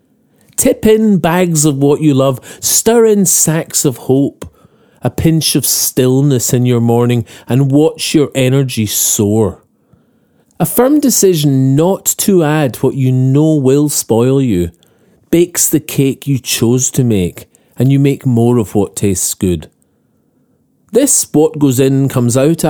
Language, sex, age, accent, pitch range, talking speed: English, male, 40-59, British, 120-160 Hz, 140 wpm